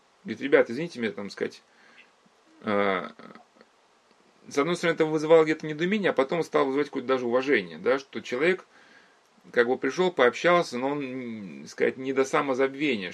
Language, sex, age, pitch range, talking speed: Russian, male, 30-49, 130-190 Hz, 150 wpm